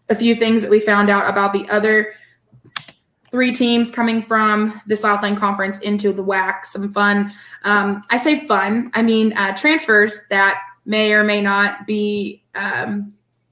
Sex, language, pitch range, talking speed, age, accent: female, English, 200-235 Hz, 165 wpm, 20-39, American